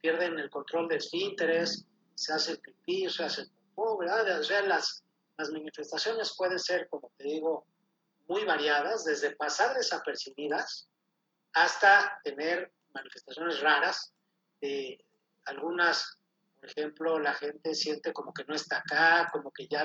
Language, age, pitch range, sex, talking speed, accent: Spanish, 40-59, 155-195 Hz, male, 140 wpm, Mexican